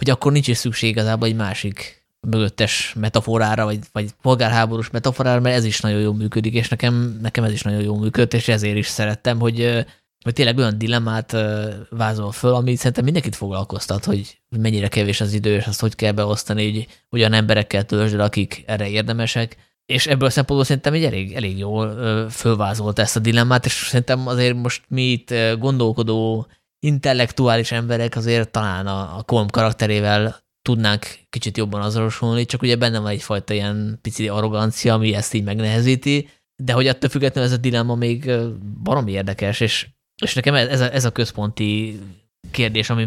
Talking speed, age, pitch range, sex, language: 170 wpm, 20-39, 105-120 Hz, male, Hungarian